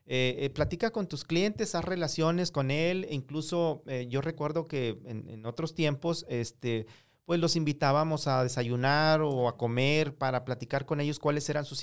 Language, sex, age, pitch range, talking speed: Spanish, male, 40-59, 145-165 Hz, 185 wpm